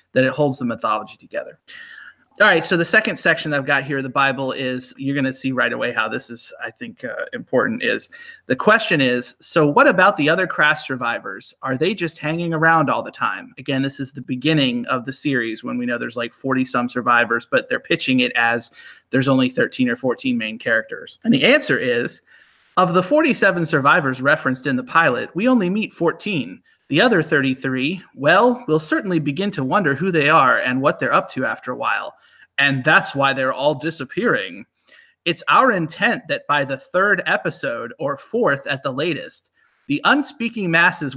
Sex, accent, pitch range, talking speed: male, American, 135-200 Hz, 195 wpm